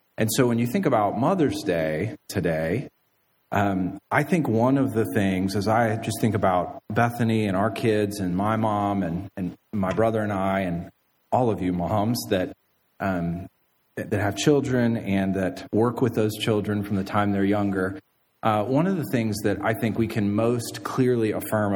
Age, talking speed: 30-49, 190 wpm